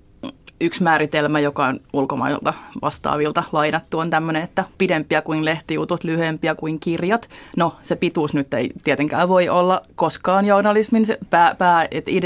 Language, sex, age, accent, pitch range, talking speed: Finnish, female, 30-49, native, 155-175 Hz, 140 wpm